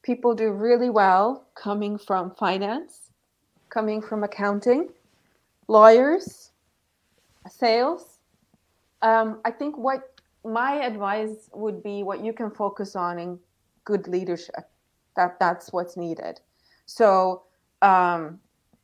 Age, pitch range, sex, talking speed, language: 30-49, 185-230 Hz, female, 110 wpm, English